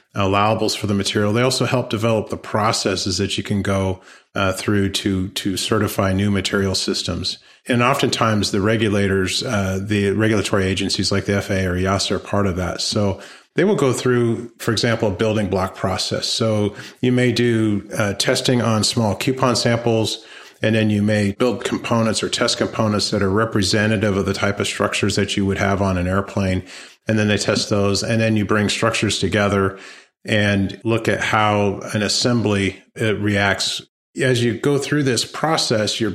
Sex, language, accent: male, English, American